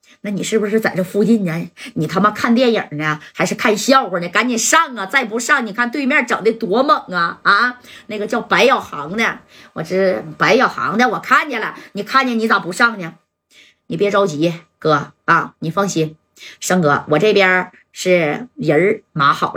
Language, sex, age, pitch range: Chinese, female, 30-49, 185-250 Hz